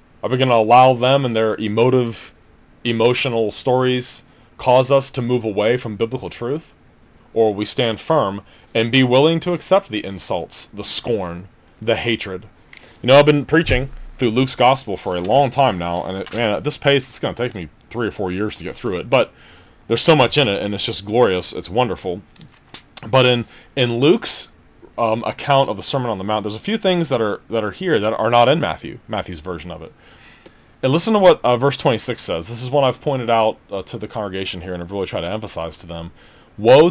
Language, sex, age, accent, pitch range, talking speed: English, male, 30-49, American, 100-130 Hz, 220 wpm